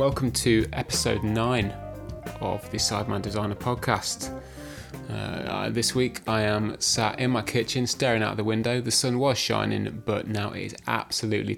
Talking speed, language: 160 wpm, English